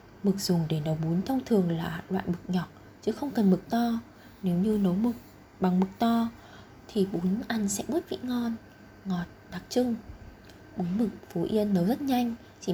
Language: Vietnamese